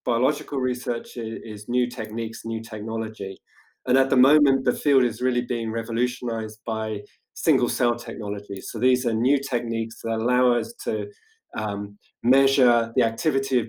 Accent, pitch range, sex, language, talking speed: British, 110-135 Hz, male, English, 155 wpm